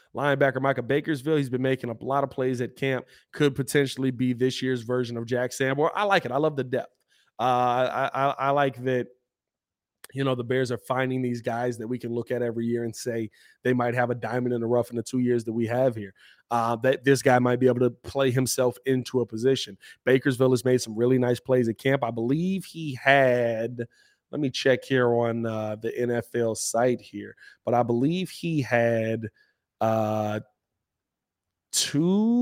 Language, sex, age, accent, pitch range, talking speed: English, male, 20-39, American, 120-140 Hz, 205 wpm